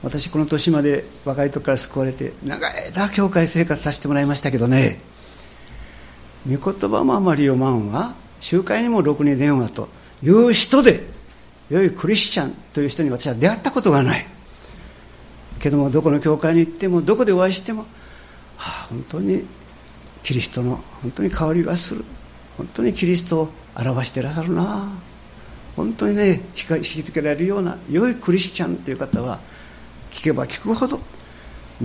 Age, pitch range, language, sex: 60-79, 120-180 Hz, Japanese, male